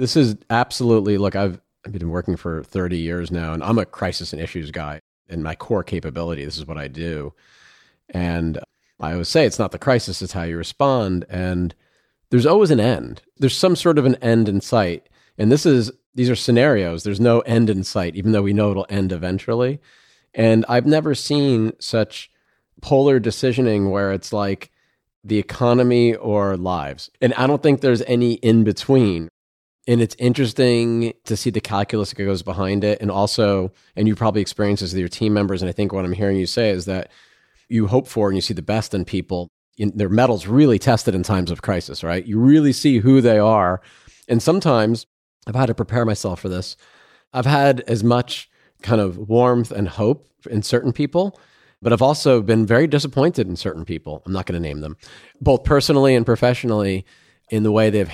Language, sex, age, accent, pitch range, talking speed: English, male, 40-59, American, 95-120 Hz, 200 wpm